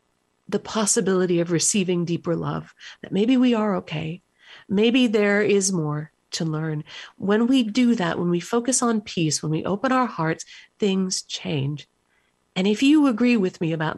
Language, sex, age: English, female, 50-69